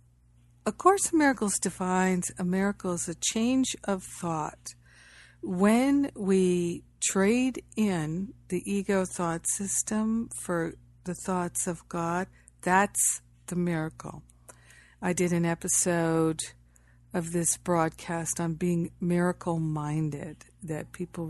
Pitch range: 160-195 Hz